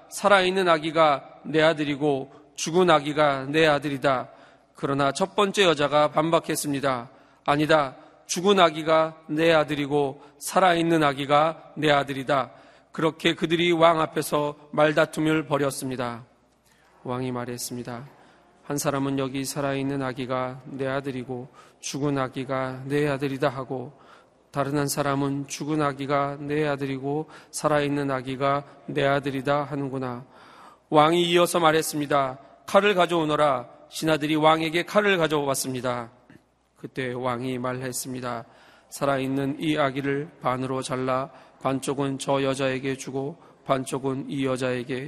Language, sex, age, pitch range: Korean, male, 40-59, 135-160 Hz